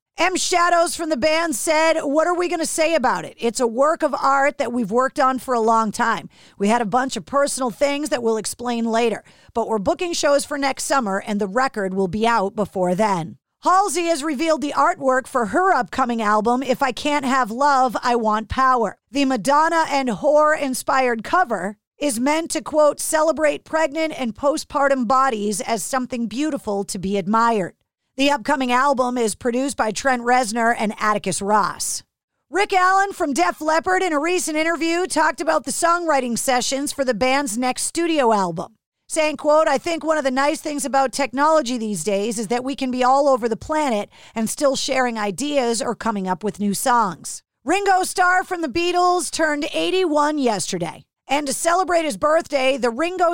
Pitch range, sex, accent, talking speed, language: 235-310 Hz, female, American, 190 wpm, English